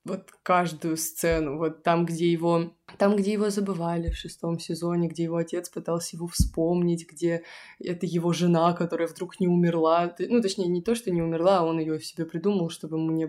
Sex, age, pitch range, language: female, 20-39, 165-180 Hz, Russian